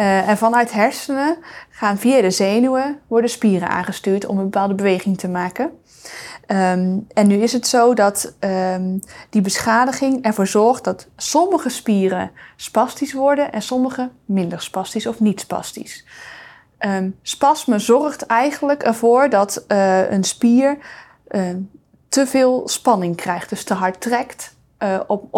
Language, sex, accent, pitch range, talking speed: Dutch, female, Dutch, 195-245 Hz, 135 wpm